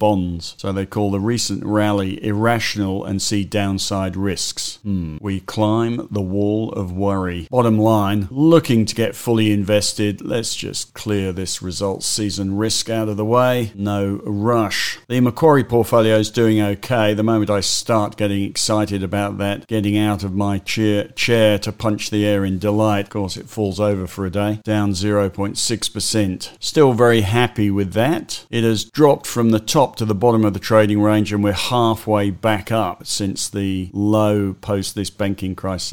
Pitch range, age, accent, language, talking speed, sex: 100-110 Hz, 50-69, British, English, 175 wpm, male